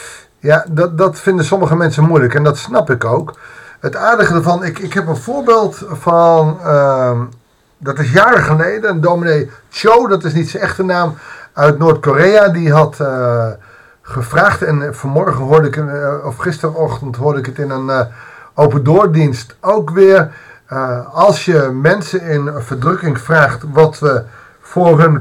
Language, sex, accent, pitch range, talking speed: Dutch, male, Dutch, 140-195 Hz, 165 wpm